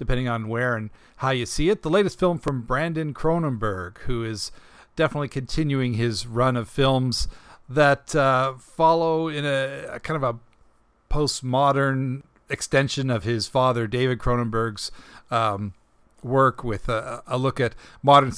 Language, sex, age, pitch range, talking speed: English, male, 50-69, 115-140 Hz, 150 wpm